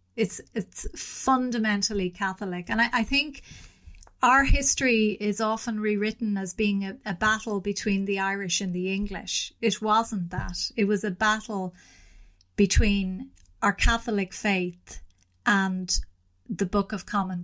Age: 30-49